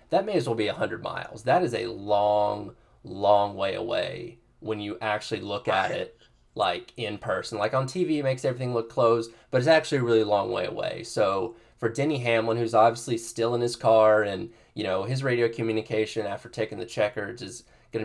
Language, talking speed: English, 205 wpm